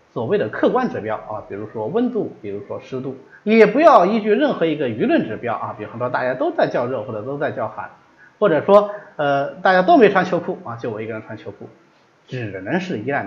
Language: Chinese